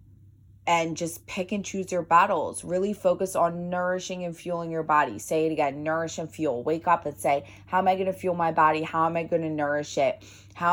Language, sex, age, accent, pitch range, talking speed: English, female, 20-39, American, 125-165 Hz, 230 wpm